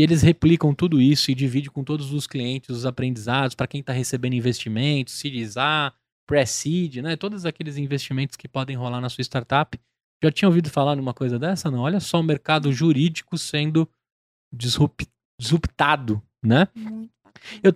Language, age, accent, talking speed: Portuguese, 20-39, Brazilian, 155 wpm